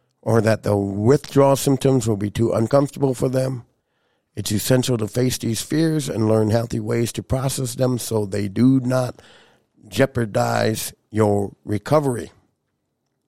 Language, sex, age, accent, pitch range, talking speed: English, male, 50-69, American, 105-130 Hz, 140 wpm